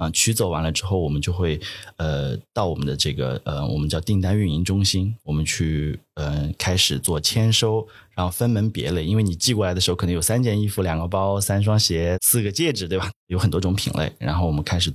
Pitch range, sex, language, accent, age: 85-110 Hz, male, Chinese, native, 30-49